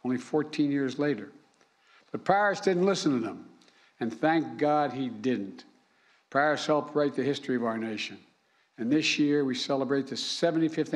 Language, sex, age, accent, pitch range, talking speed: English, male, 60-79, American, 120-145 Hz, 165 wpm